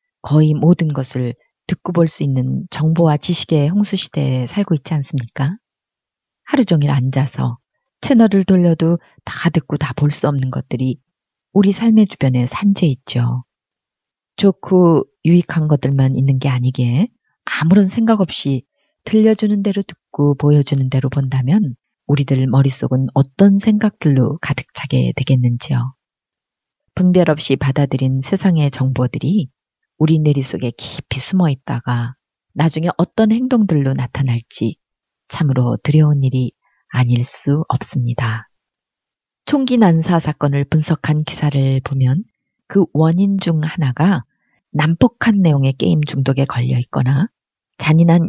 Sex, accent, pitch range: female, native, 130-175 Hz